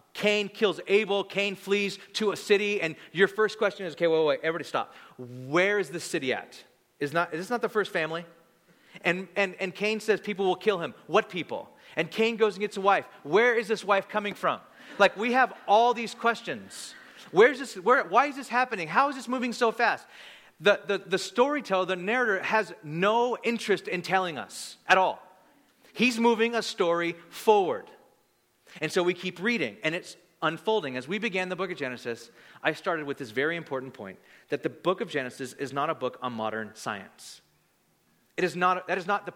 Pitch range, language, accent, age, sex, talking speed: 165-210 Hz, English, American, 30-49, male, 205 wpm